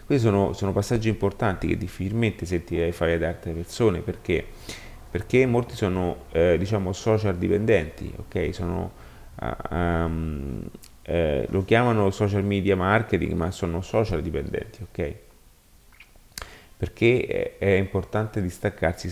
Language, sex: Italian, male